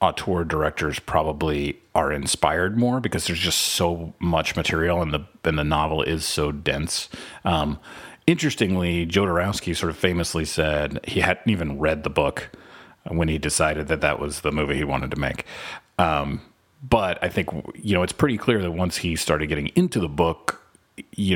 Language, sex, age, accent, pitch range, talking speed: English, male, 40-59, American, 75-90 Hz, 180 wpm